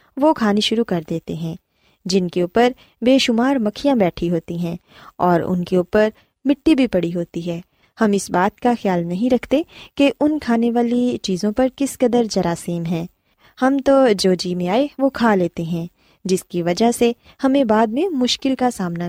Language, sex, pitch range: Urdu, female, 180-255 Hz